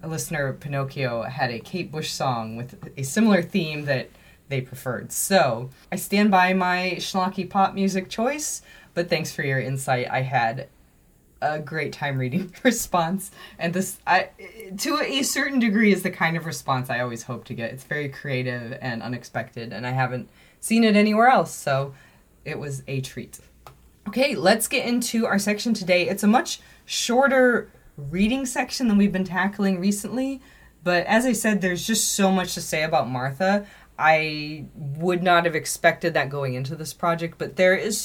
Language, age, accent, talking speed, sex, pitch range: English, 20-39, American, 180 wpm, female, 135-200 Hz